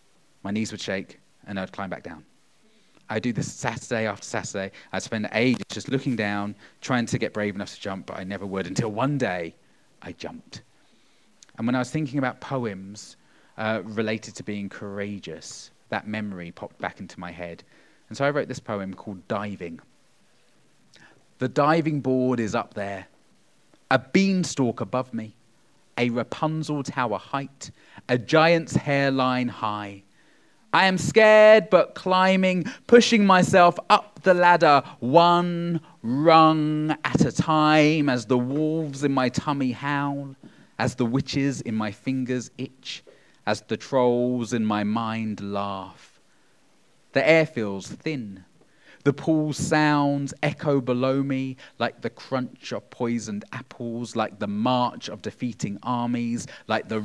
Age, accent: 30-49, British